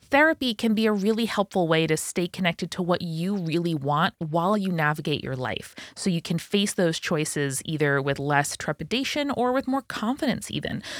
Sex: female